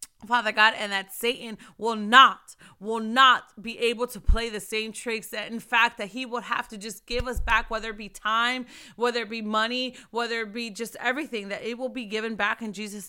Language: English